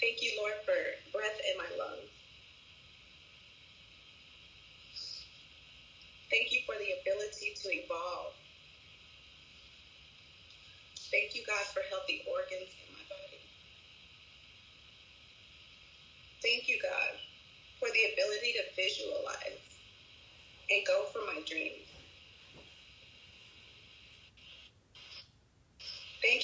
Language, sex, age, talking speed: English, female, 30-49, 85 wpm